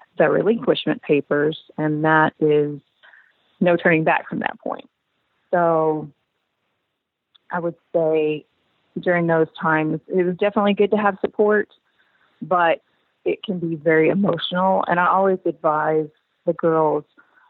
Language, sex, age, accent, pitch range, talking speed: English, female, 30-49, American, 160-195 Hz, 125 wpm